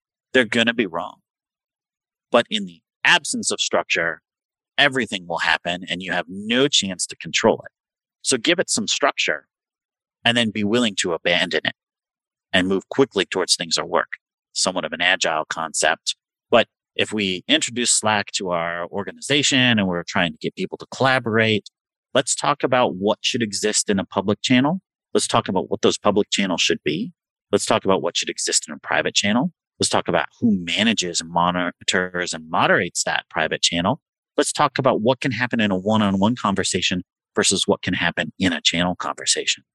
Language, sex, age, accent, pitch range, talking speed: English, male, 40-59, American, 95-145 Hz, 185 wpm